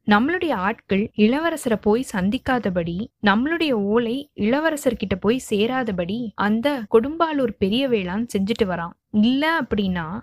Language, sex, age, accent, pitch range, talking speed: Tamil, female, 20-39, native, 200-260 Hz, 105 wpm